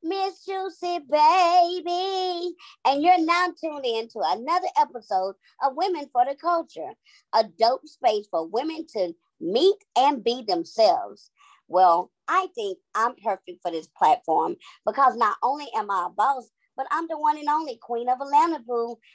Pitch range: 220-365 Hz